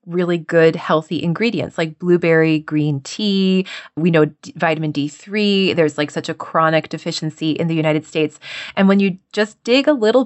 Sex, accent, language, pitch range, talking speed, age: female, American, English, 160-200 Hz, 170 wpm, 20-39